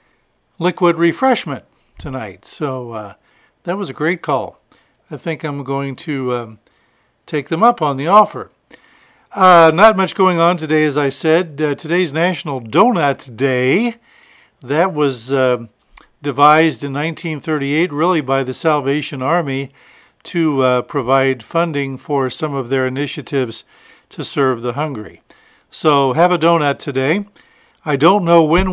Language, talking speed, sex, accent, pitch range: English, 145 wpm, male, American, 135-170 Hz